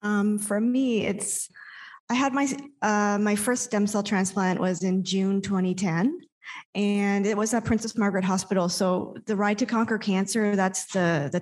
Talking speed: 180 wpm